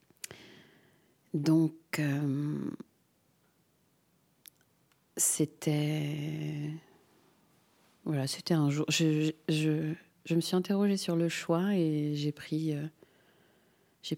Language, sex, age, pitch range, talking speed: French, female, 30-49, 150-170 Hz, 95 wpm